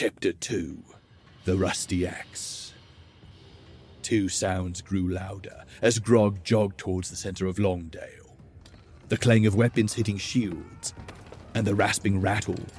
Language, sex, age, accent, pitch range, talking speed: English, male, 40-59, British, 95-115 Hz, 125 wpm